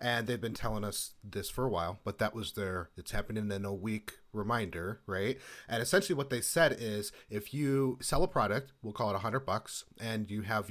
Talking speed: 225 wpm